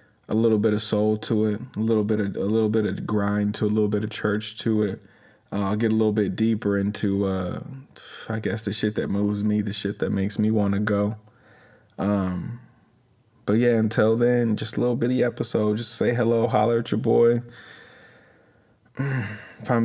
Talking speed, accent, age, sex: 200 wpm, American, 20-39, male